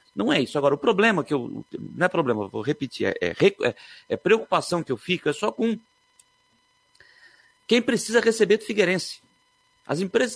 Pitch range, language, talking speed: 150-205 Hz, Portuguese, 180 wpm